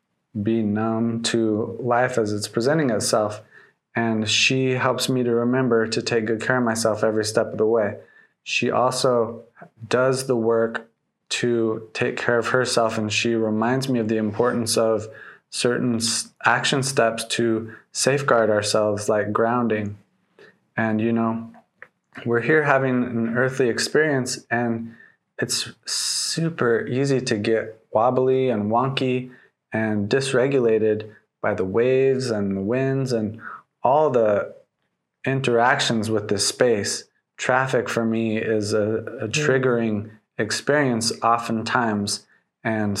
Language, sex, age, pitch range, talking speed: English, male, 20-39, 110-125 Hz, 130 wpm